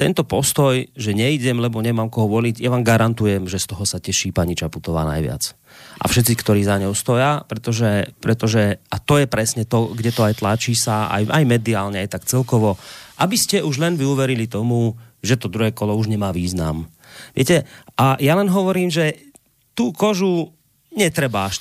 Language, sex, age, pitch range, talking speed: Slovak, male, 30-49, 100-130 Hz, 185 wpm